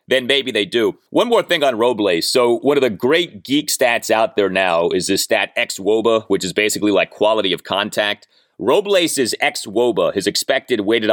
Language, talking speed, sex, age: English, 190 wpm, male, 30-49